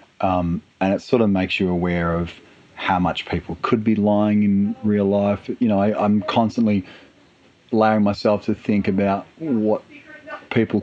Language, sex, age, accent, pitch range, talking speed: English, male, 40-59, Australian, 95-115 Hz, 165 wpm